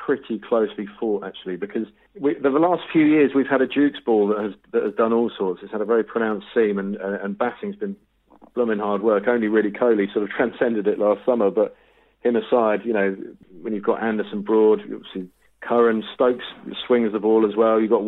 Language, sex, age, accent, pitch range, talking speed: English, male, 40-59, British, 105-125 Hz, 215 wpm